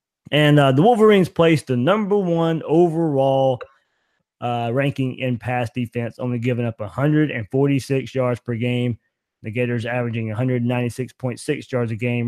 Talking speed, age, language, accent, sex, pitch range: 135 wpm, 20-39, English, American, male, 130-155 Hz